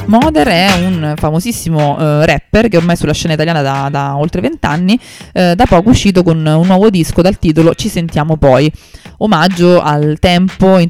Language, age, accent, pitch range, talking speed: Italian, 20-39, native, 155-185 Hz, 180 wpm